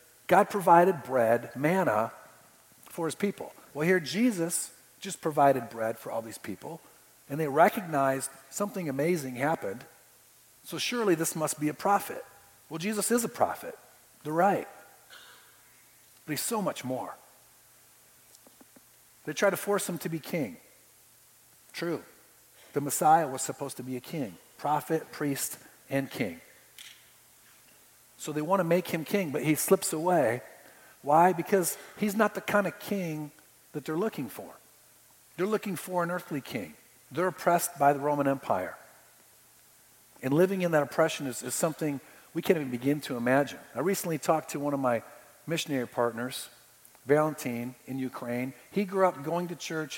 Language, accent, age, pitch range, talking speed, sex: English, American, 50-69, 135-180 Hz, 155 wpm, male